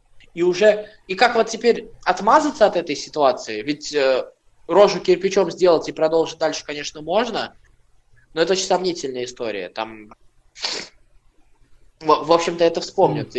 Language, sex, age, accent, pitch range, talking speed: Russian, male, 20-39, native, 155-220 Hz, 140 wpm